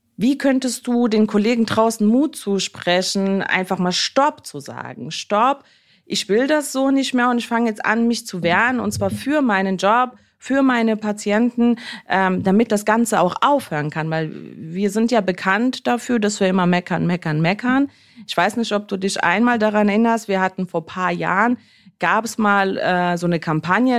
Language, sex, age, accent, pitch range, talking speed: German, female, 30-49, German, 180-230 Hz, 190 wpm